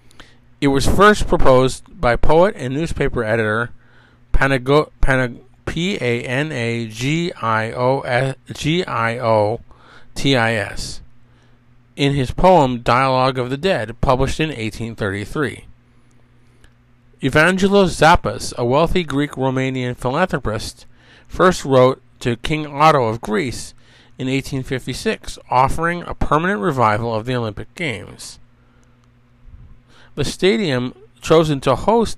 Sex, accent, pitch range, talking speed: male, American, 120-150 Hz, 90 wpm